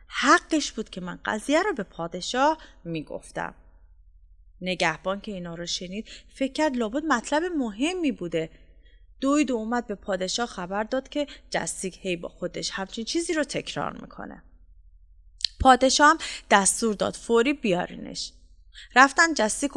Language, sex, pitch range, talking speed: Persian, female, 180-280 Hz, 135 wpm